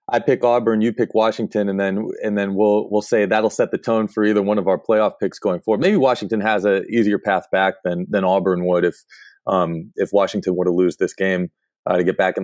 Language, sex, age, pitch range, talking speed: English, male, 20-39, 95-110 Hz, 245 wpm